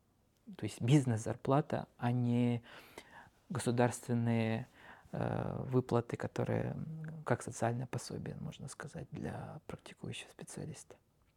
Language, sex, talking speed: Russian, male, 90 wpm